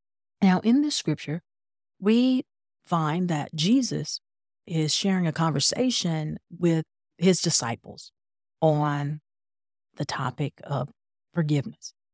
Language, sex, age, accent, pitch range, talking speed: English, female, 50-69, American, 145-205 Hz, 100 wpm